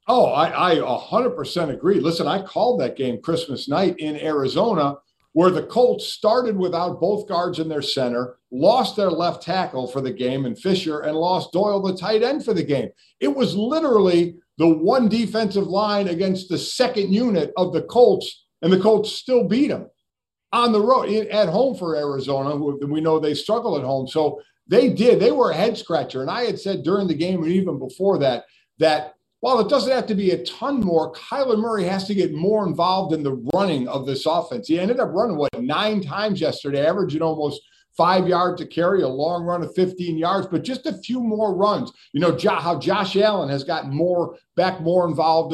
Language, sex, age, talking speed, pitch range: English, male, 50-69, 205 wpm, 155-210 Hz